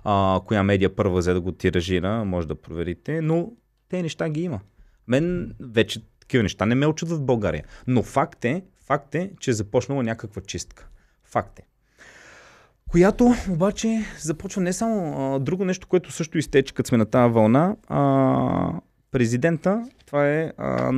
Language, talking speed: Bulgarian, 165 wpm